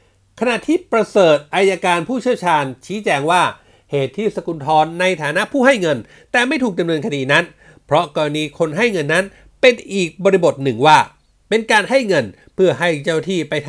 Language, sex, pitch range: Thai, male, 150-220 Hz